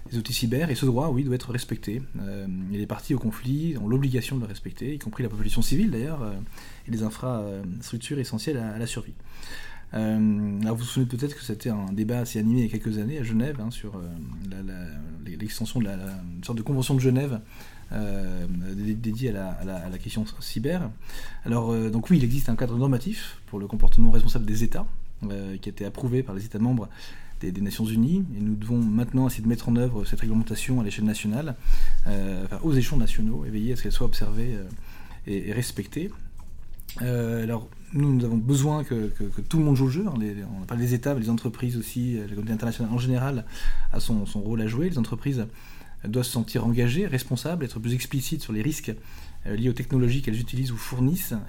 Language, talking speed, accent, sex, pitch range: French, 225 wpm, French, male, 105-125 Hz